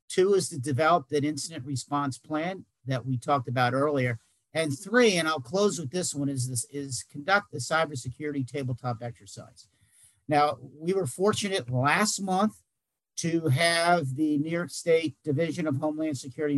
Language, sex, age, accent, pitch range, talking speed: English, male, 50-69, American, 125-155 Hz, 165 wpm